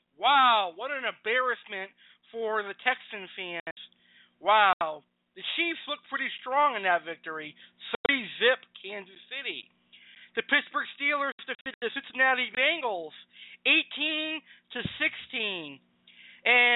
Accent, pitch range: American, 210-260 Hz